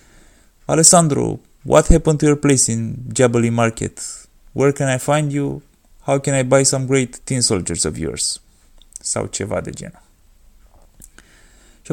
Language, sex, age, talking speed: Romanian, male, 20-39, 145 wpm